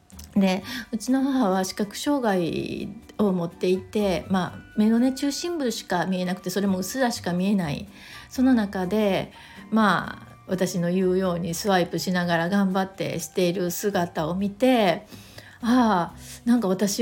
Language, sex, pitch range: Japanese, female, 185-240 Hz